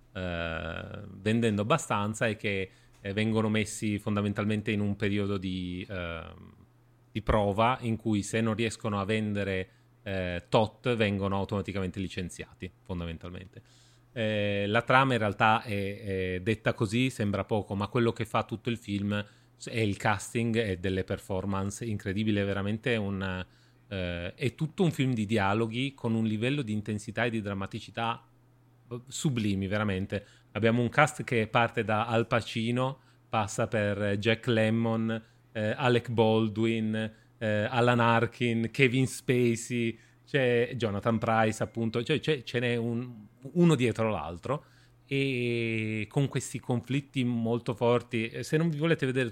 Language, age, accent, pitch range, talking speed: Italian, 30-49, native, 105-125 Hz, 140 wpm